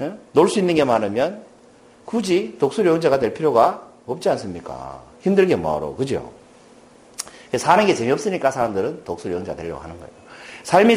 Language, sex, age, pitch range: Korean, male, 40-59, 140-205 Hz